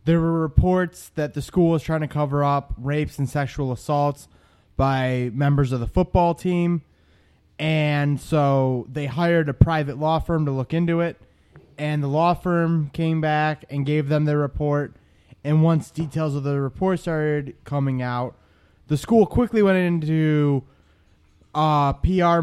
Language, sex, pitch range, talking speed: English, male, 130-160 Hz, 160 wpm